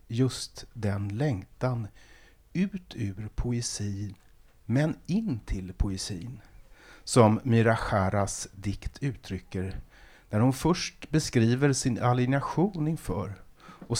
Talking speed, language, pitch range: 95 wpm, Swedish, 105-145 Hz